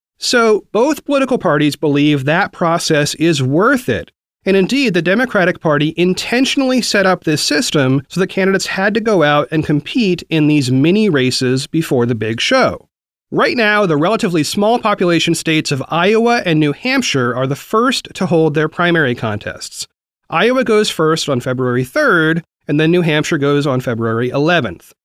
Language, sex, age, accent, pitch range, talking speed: English, male, 30-49, American, 145-210 Hz, 170 wpm